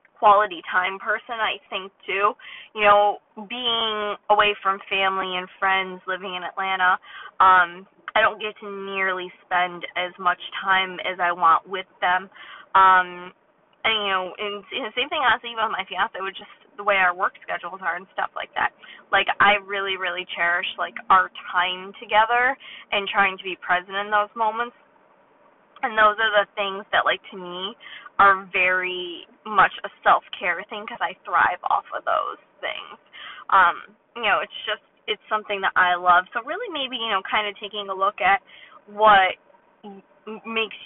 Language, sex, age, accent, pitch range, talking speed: English, female, 20-39, American, 190-235 Hz, 175 wpm